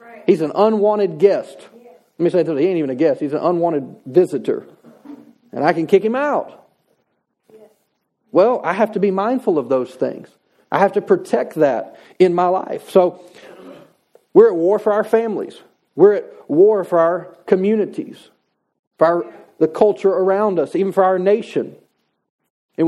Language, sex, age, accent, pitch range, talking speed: English, male, 40-59, American, 170-220 Hz, 165 wpm